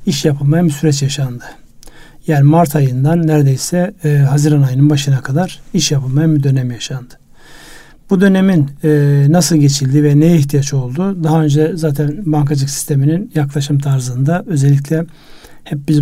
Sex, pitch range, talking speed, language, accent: male, 140-160 Hz, 140 wpm, Turkish, native